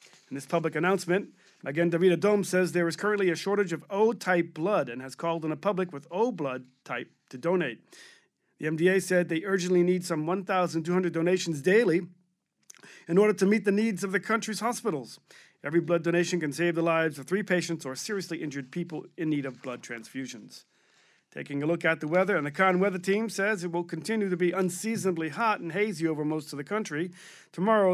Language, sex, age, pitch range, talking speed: English, male, 40-59, 160-200 Hz, 200 wpm